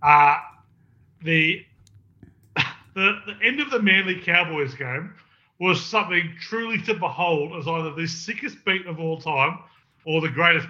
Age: 30-49